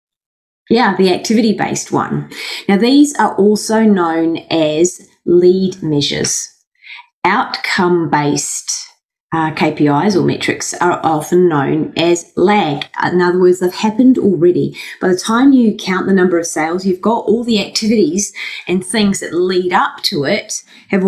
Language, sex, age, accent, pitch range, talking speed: English, female, 30-49, Australian, 160-215 Hz, 140 wpm